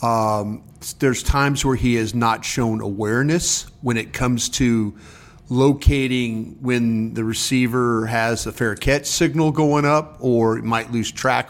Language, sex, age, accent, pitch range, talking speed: English, male, 40-59, American, 115-140 Hz, 145 wpm